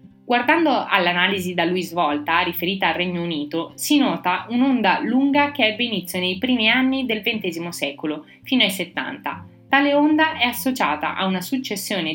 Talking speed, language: 160 wpm, Italian